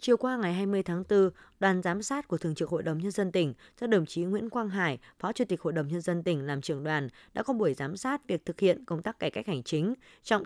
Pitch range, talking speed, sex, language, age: 160-215 Hz, 280 wpm, female, Vietnamese, 20-39